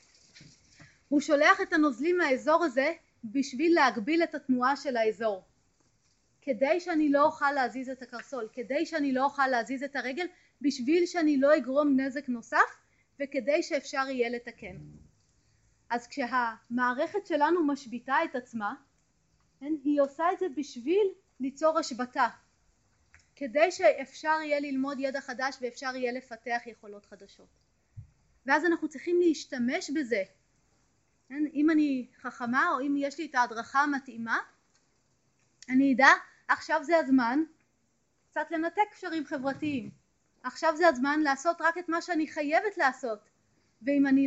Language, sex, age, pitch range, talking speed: Hebrew, female, 30-49, 255-320 Hz, 130 wpm